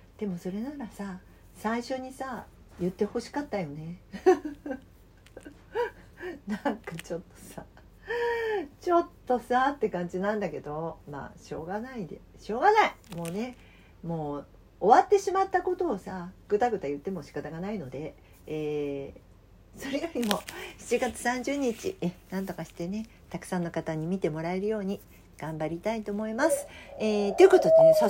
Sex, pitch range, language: female, 175-280 Hz, Japanese